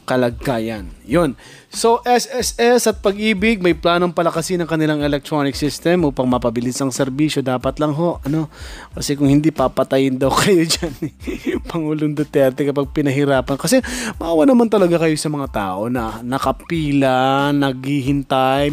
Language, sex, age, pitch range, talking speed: Filipino, male, 20-39, 130-165 Hz, 140 wpm